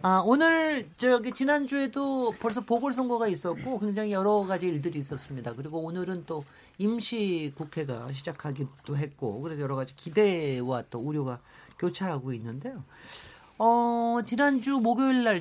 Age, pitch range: 40-59, 135-210 Hz